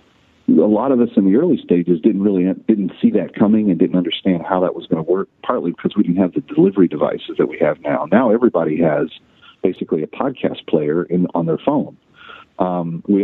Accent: American